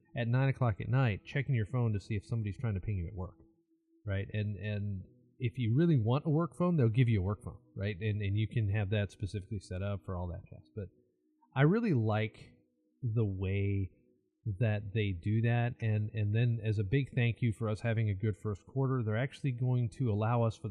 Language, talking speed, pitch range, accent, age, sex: English, 230 wpm, 105-135 Hz, American, 30-49, male